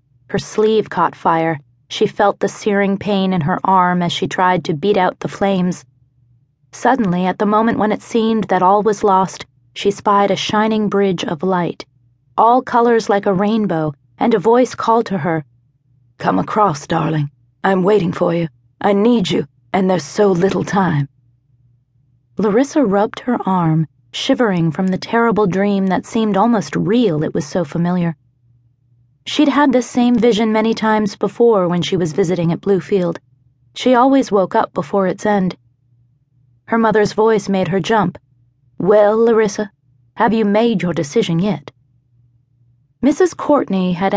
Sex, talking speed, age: female, 160 wpm, 30-49